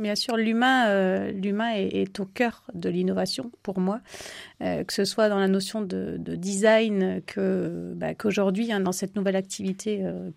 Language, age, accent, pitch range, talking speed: French, 30-49, French, 185-215 Hz, 185 wpm